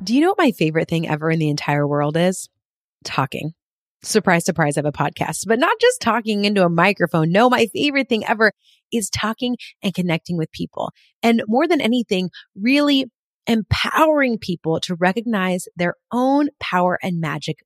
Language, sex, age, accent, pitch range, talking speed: English, female, 30-49, American, 180-250 Hz, 175 wpm